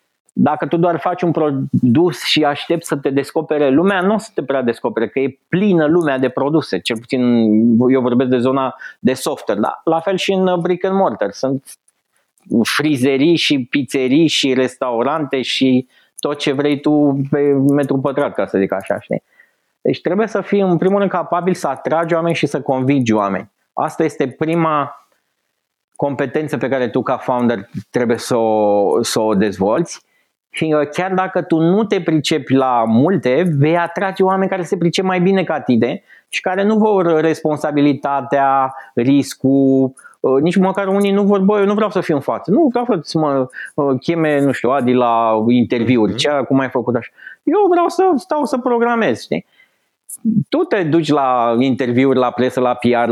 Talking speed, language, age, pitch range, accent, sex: 175 wpm, Romanian, 30-49, 130-180 Hz, native, male